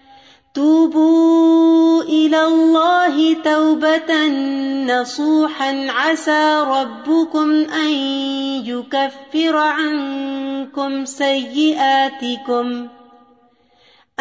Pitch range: 270-310 Hz